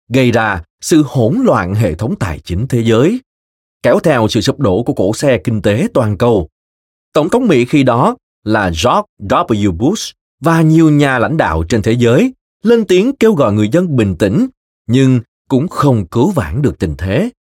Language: Vietnamese